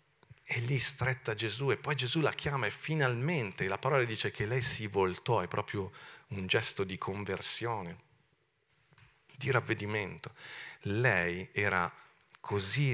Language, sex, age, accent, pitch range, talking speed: Italian, male, 40-59, native, 100-140 Hz, 135 wpm